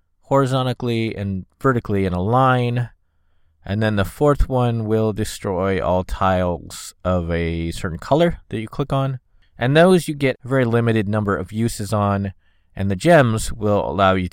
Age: 20-39